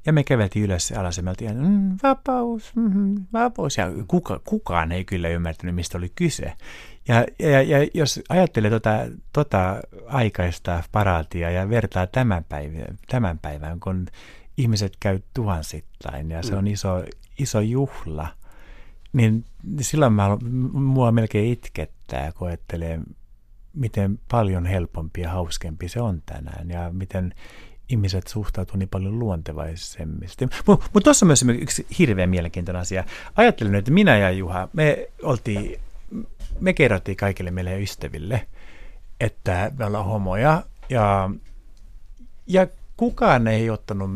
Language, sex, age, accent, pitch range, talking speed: Finnish, male, 60-79, native, 90-125 Hz, 130 wpm